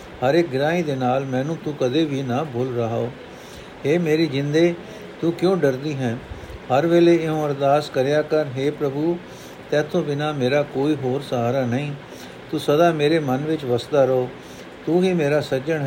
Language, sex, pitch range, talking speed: Punjabi, male, 135-165 Hz, 175 wpm